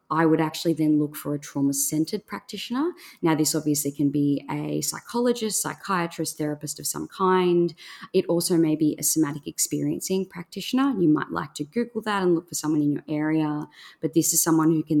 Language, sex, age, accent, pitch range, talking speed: English, female, 20-39, Australian, 145-170 Hz, 190 wpm